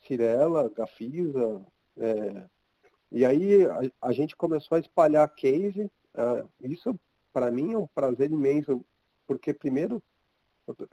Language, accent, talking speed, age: Portuguese, Brazilian, 125 wpm, 40-59